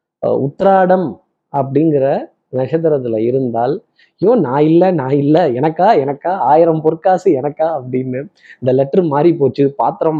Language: Tamil